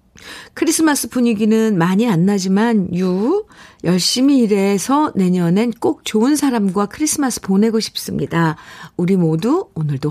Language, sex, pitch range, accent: Korean, female, 170-235 Hz, native